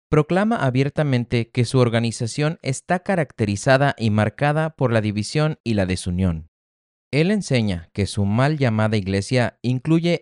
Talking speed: 135 wpm